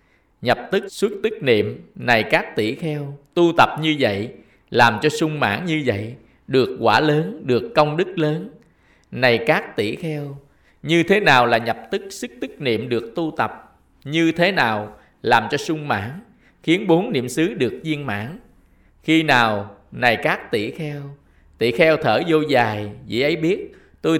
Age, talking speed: 20-39, 175 wpm